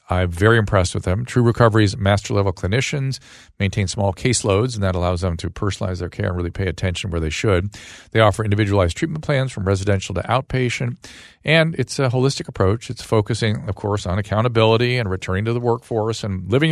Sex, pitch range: male, 95-125 Hz